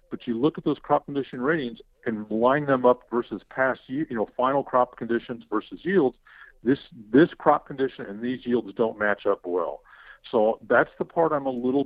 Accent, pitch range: American, 105-135 Hz